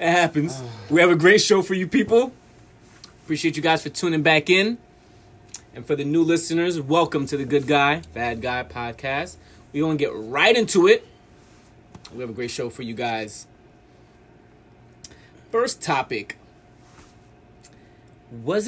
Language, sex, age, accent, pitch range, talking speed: English, male, 20-39, American, 120-165 Hz, 155 wpm